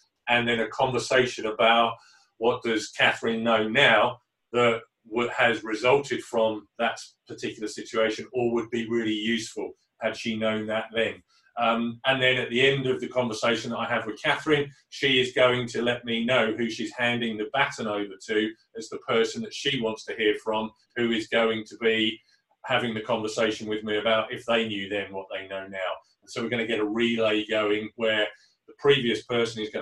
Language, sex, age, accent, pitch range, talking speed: English, male, 30-49, British, 110-120 Hz, 195 wpm